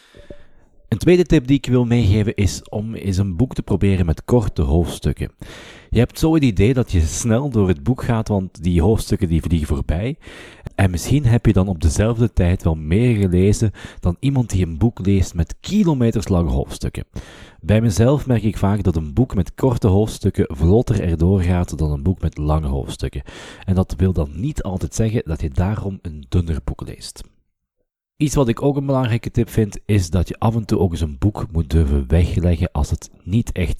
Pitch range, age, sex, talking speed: 85-115 Hz, 40-59, male, 205 wpm